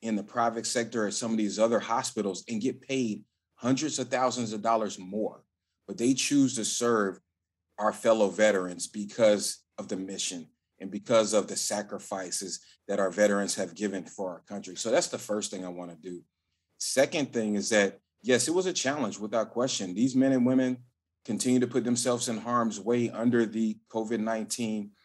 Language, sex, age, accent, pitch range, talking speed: English, male, 30-49, American, 100-125 Hz, 185 wpm